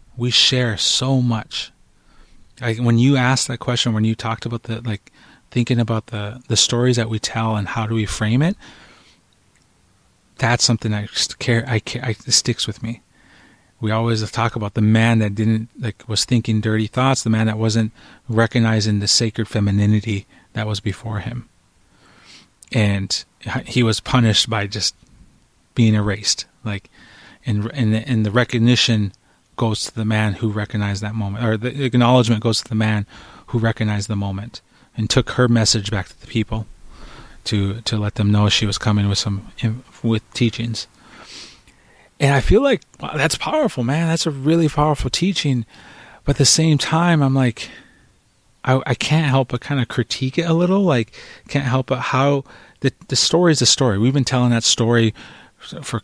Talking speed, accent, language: 180 wpm, American, English